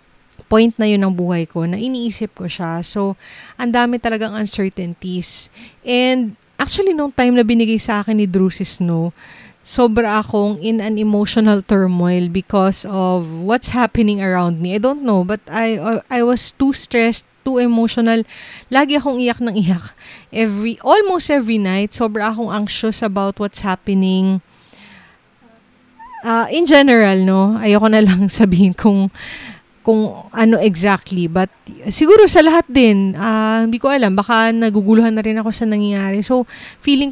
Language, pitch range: Filipino, 195-235 Hz